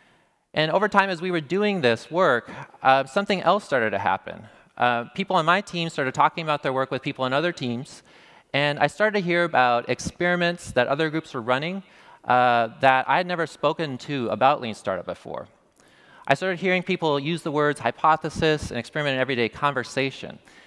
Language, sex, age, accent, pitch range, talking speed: English, male, 30-49, American, 130-170 Hz, 190 wpm